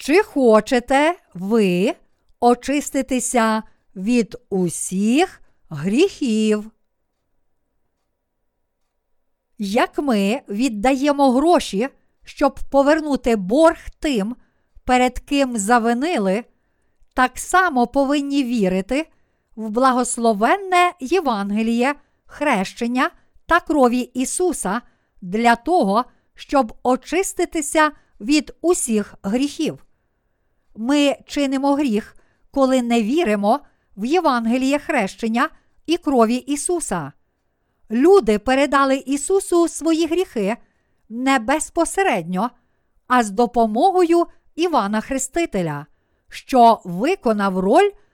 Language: Ukrainian